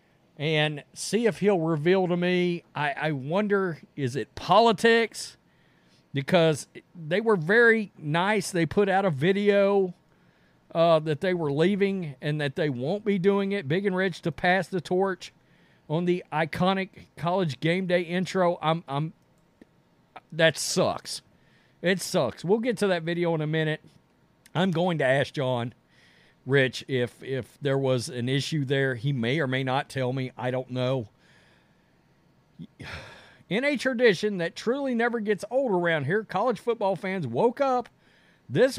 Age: 50-69